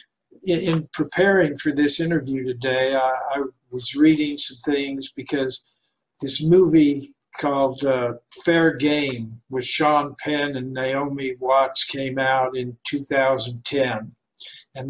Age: 60-79